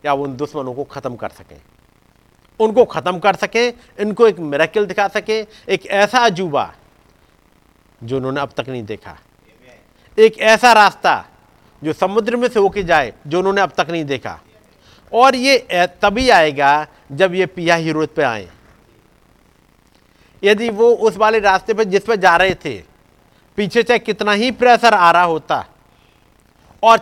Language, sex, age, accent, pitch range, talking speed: Hindi, male, 50-69, native, 150-235 Hz, 155 wpm